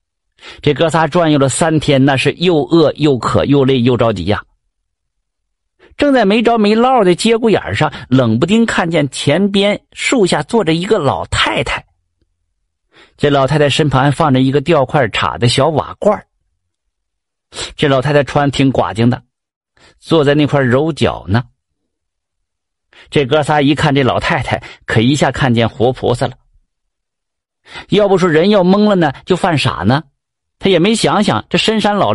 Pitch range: 120-175 Hz